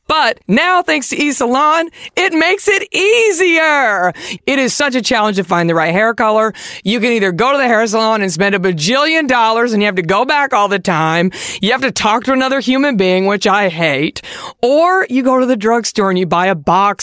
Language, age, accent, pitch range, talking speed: English, 40-59, American, 200-290 Hz, 225 wpm